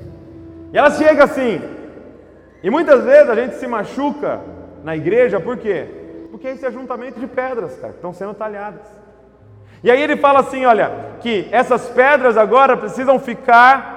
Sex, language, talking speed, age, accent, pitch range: male, Portuguese, 160 wpm, 30-49, Brazilian, 150-225 Hz